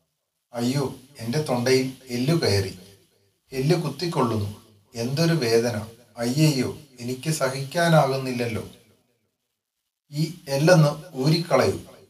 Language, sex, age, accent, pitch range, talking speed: Malayalam, male, 30-49, native, 120-155 Hz, 70 wpm